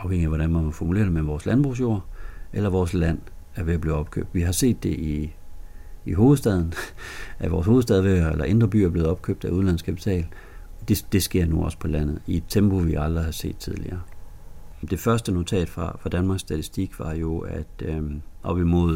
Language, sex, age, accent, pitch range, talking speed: Danish, male, 60-79, native, 80-95 Hz, 200 wpm